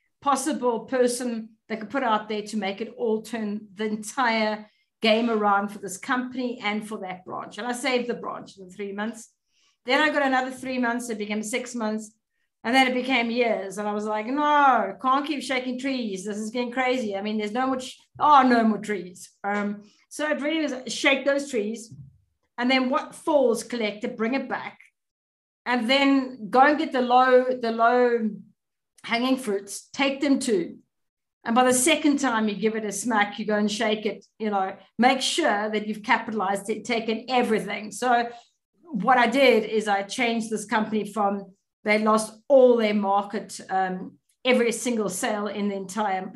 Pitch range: 210-255 Hz